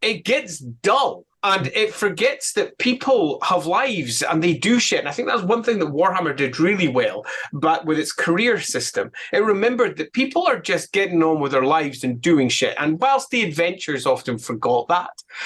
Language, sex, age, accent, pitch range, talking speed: English, male, 30-49, British, 135-200 Hz, 200 wpm